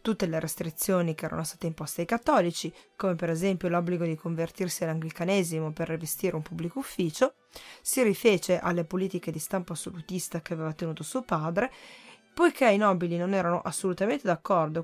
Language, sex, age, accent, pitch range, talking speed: Italian, female, 20-39, native, 170-210 Hz, 160 wpm